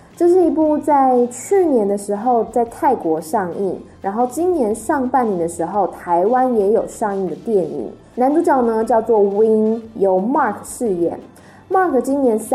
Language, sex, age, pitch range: Chinese, female, 10-29, 185-275 Hz